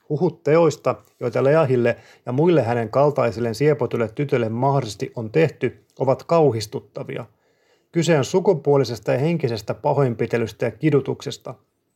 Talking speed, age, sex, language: 115 wpm, 30-49, male, Finnish